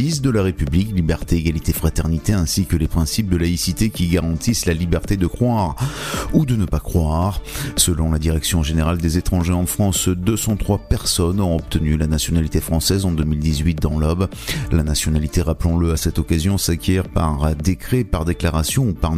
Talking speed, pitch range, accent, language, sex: 170 wpm, 80-100 Hz, French, French, male